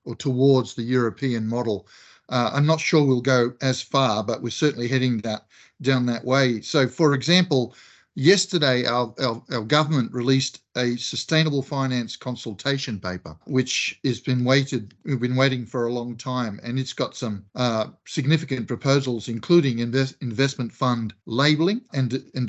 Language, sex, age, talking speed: English, male, 50-69, 160 wpm